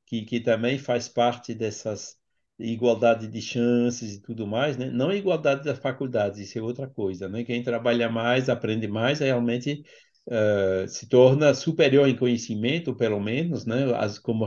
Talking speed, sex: 165 wpm, male